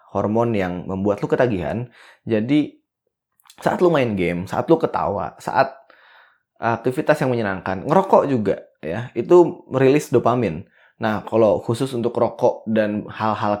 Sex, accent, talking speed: male, native, 130 wpm